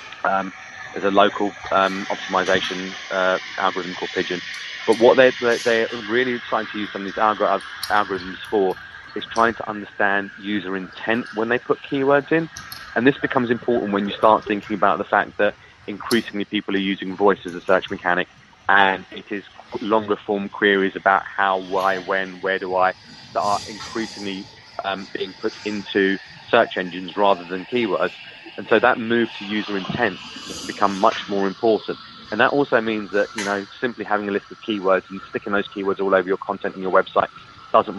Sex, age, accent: male, 20-39, British